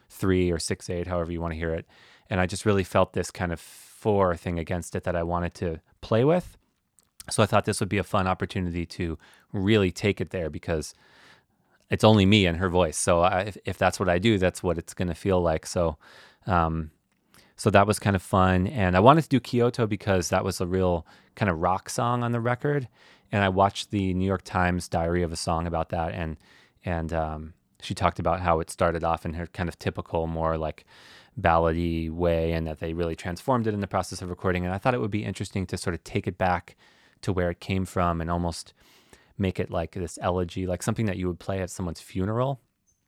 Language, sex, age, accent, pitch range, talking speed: English, male, 30-49, American, 85-100 Hz, 230 wpm